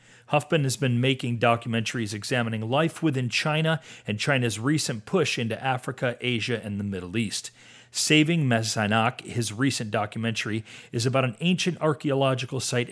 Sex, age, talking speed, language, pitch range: male, 40-59, 145 wpm, English, 110-135 Hz